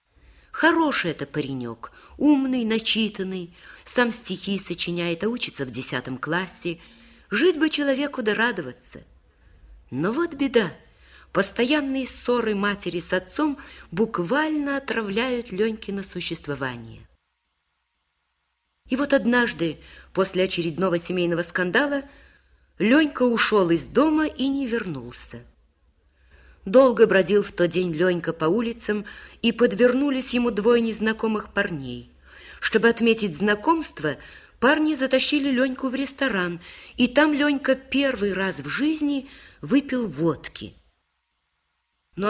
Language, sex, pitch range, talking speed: Russian, female, 160-245 Hz, 110 wpm